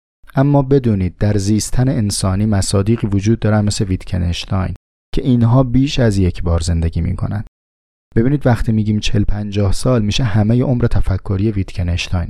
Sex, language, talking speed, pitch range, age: male, Persian, 140 wpm, 95-125 Hz, 30-49